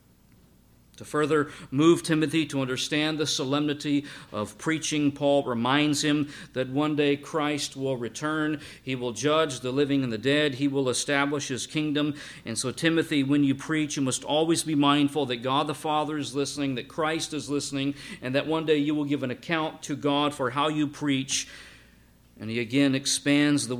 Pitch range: 120-150 Hz